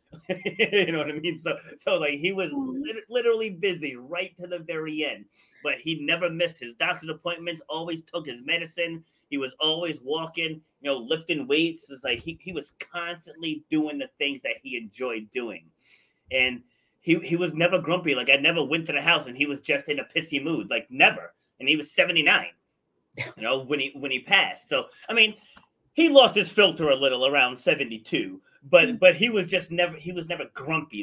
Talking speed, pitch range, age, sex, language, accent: 205 wpm, 145-180 Hz, 30-49, male, English, American